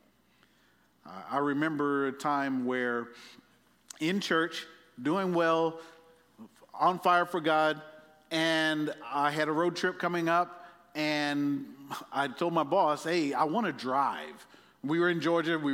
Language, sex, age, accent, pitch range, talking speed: English, male, 50-69, American, 140-180 Hz, 135 wpm